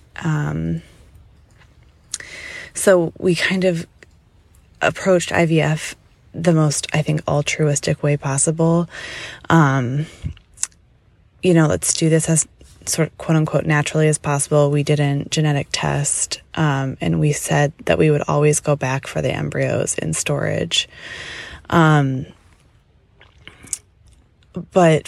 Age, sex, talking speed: 20-39, female, 115 wpm